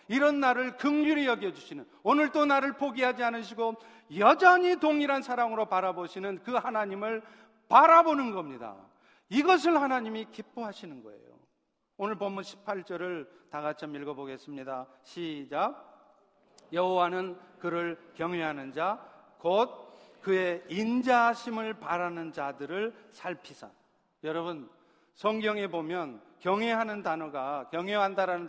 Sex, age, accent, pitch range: male, 40-59, native, 180-255 Hz